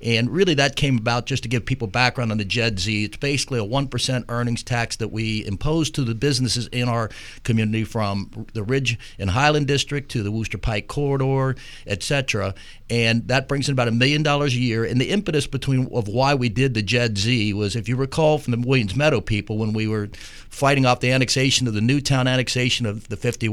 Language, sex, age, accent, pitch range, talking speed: English, male, 50-69, American, 110-135 Hz, 220 wpm